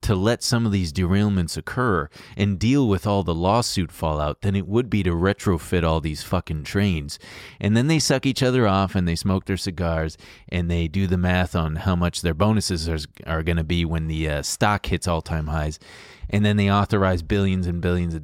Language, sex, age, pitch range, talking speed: English, male, 30-49, 85-125 Hz, 215 wpm